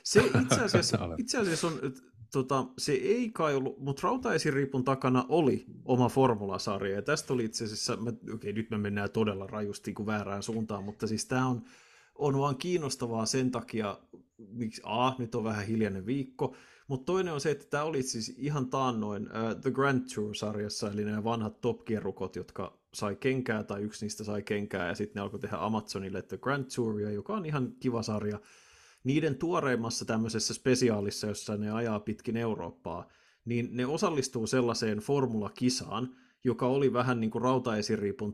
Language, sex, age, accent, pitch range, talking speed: Finnish, male, 30-49, native, 105-130 Hz, 170 wpm